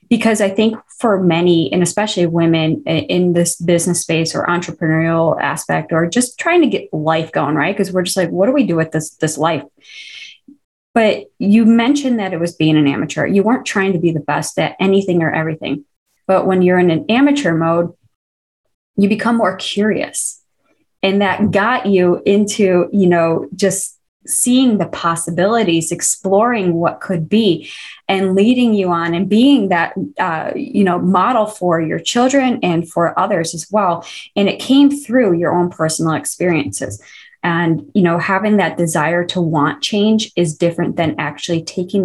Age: 20-39